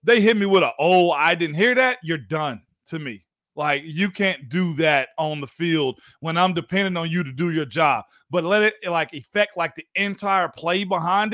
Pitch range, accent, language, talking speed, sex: 170-215 Hz, American, English, 215 wpm, male